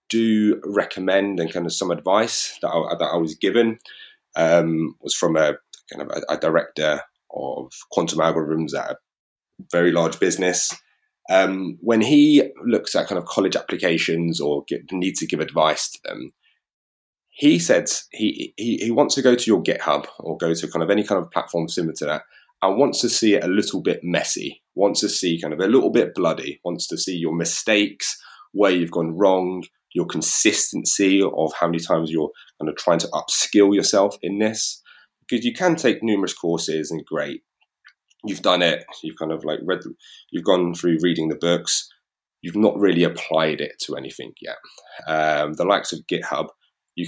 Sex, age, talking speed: male, 20-39, 190 wpm